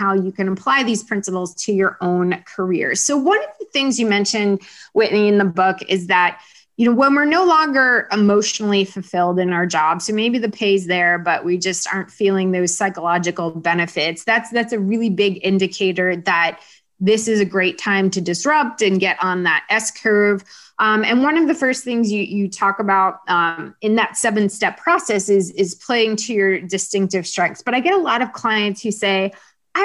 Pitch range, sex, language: 190-240 Hz, female, English